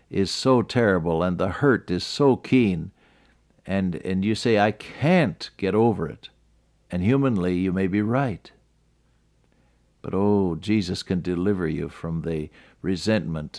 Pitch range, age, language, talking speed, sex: 90-115 Hz, 60-79, English, 145 wpm, male